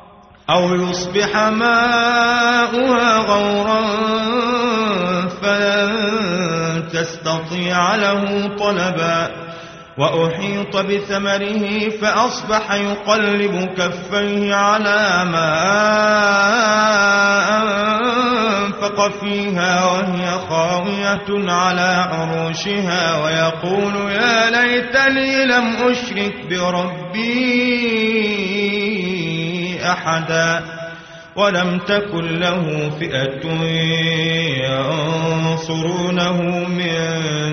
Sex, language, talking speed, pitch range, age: male, Arabic, 55 wpm, 175-220 Hz, 30-49